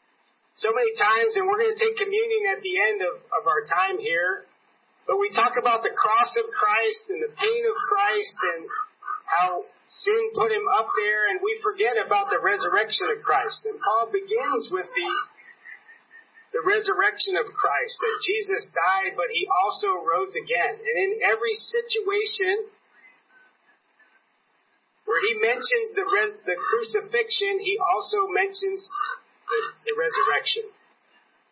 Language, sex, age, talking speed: English, male, 40-59, 150 wpm